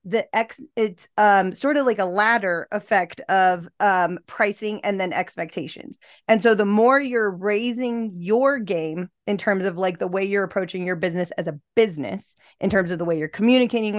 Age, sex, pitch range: 30-49, female, 180-220 Hz